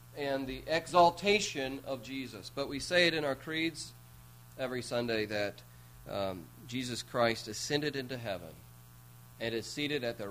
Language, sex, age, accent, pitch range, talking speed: English, male, 40-59, American, 95-135 Hz, 150 wpm